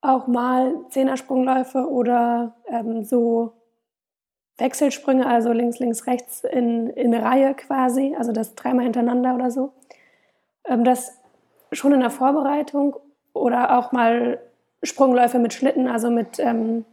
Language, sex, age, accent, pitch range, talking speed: German, female, 20-39, German, 235-265 Hz, 130 wpm